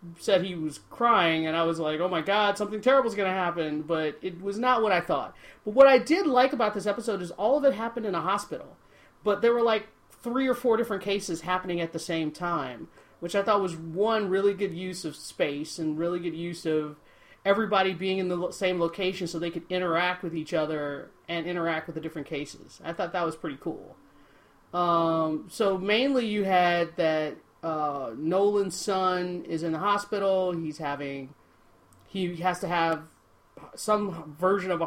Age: 40-59